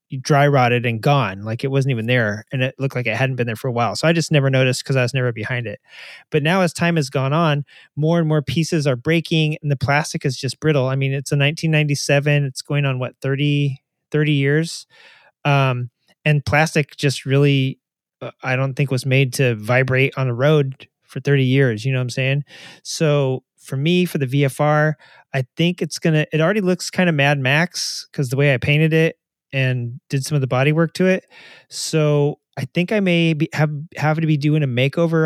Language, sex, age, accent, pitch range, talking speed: English, male, 30-49, American, 135-155 Hz, 220 wpm